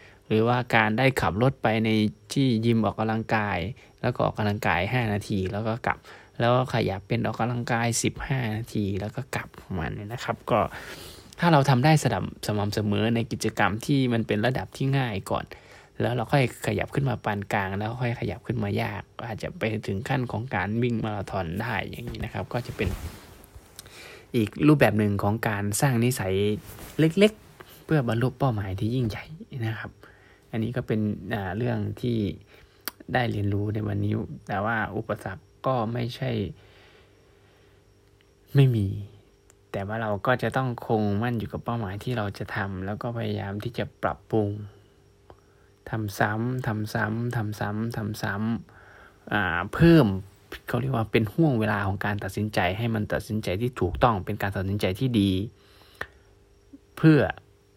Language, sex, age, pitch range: Thai, male, 20-39, 100-120 Hz